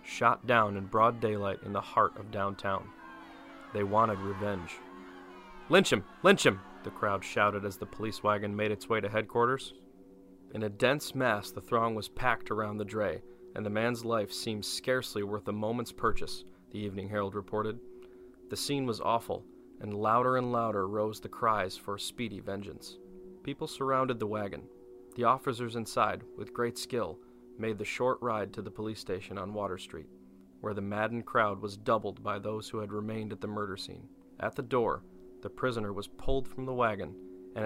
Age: 20-39